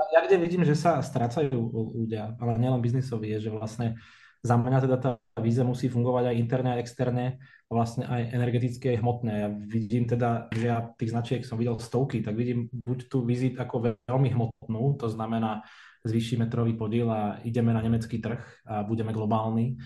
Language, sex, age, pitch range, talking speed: Czech, male, 20-39, 120-140 Hz, 175 wpm